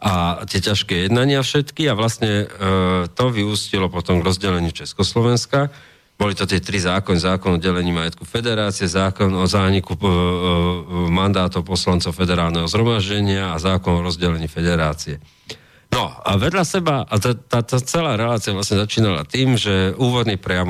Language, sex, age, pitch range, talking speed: Slovak, male, 40-59, 90-110 Hz, 150 wpm